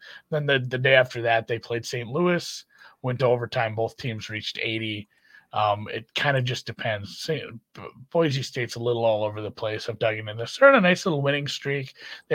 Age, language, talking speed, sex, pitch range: 30-49, English, 215 wpm, male, 115-140 Hz